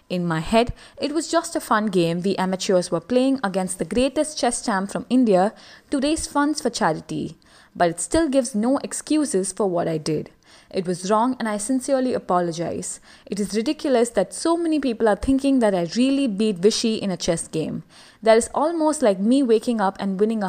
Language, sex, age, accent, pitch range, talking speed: English, female, 20-39, Indian, 185-265 Hz, 205 wpm